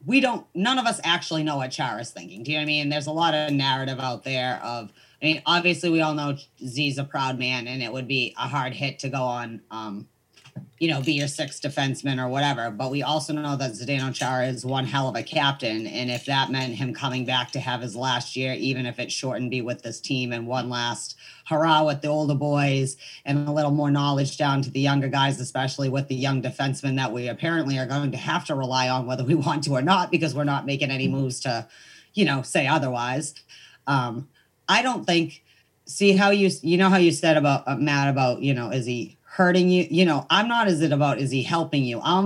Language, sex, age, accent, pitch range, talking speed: English, female, 30-49, American, 130-165 Hz, 245 wpm